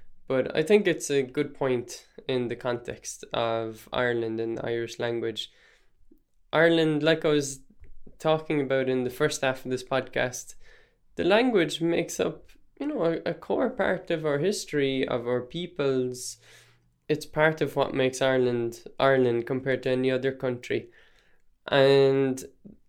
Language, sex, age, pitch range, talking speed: English, male, 10-29, 125-155 Hz, 150 wpm